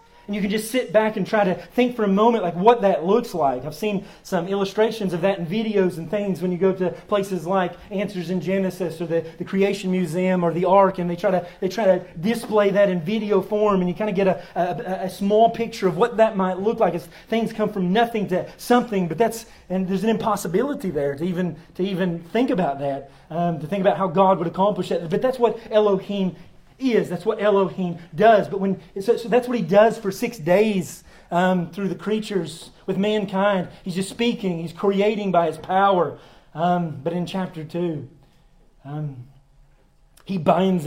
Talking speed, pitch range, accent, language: 215 wpm, 165-205 Hz, American, English